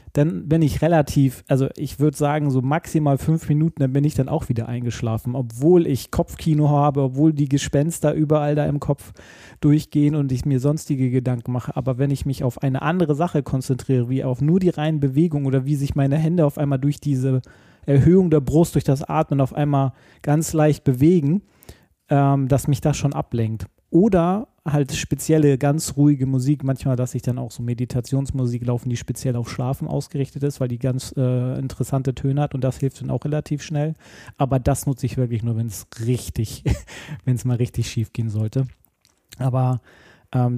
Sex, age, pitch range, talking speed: male, 30-49, 125-150 Hz, 190 wpm